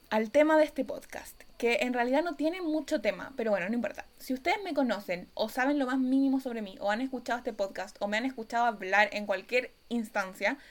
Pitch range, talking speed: 205-265 Hz, 225 wpm